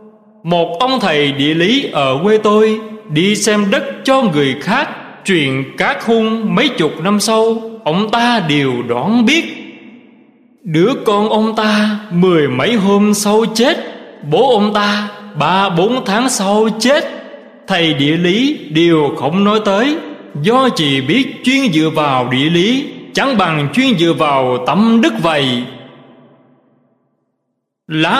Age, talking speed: 20-39, 145 wpm